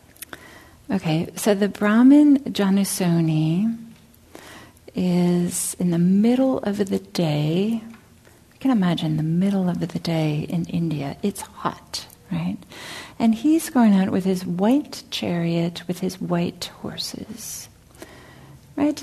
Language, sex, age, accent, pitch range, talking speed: English, female, 50-69, American, 180-230 Hz, 120 wpm